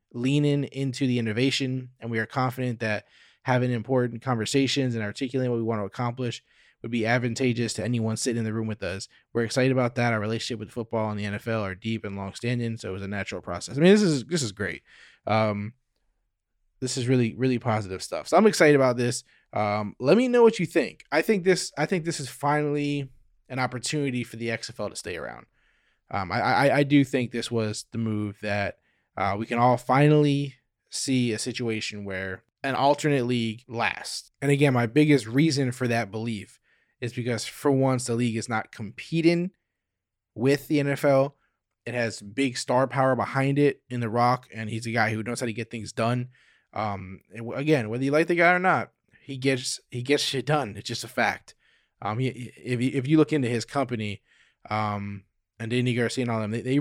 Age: 20-39